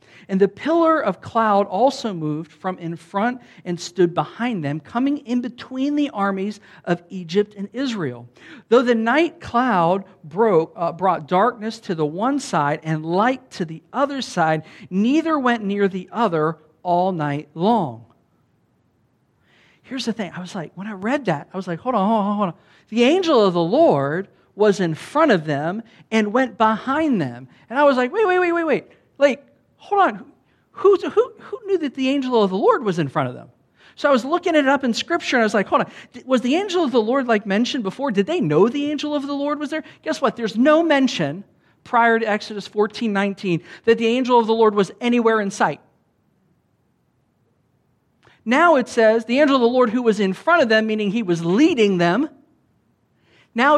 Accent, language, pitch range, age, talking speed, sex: American, English, 180-265 Hz, 50-69, 200 wpm, male